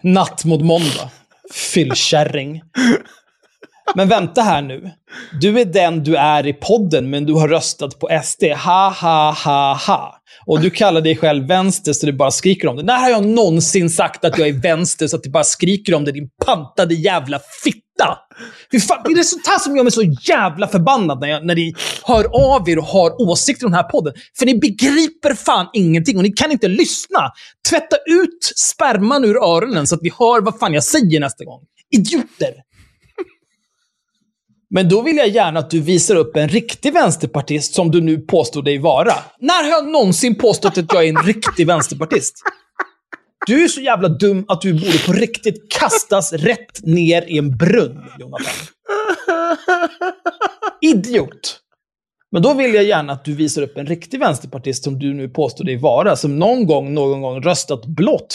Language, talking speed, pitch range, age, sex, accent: Swedish, 185 wpm, 155-230 Hz, 20-39, male, native